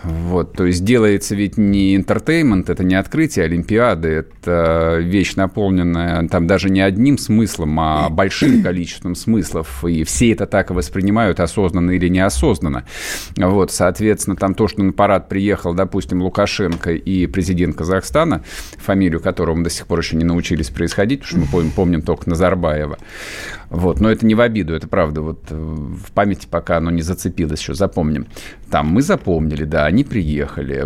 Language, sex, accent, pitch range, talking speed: Russian, male, native, 85-105 Hz, 160 wpm